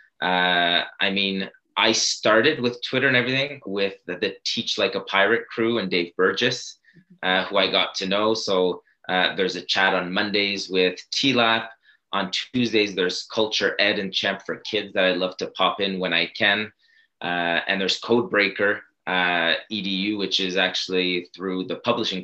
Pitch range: 90-105 Hz